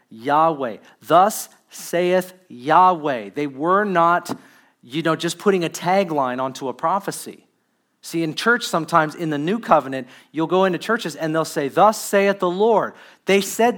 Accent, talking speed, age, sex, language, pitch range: American, 160 wpm, 40-59, male, English, 145-185 Hz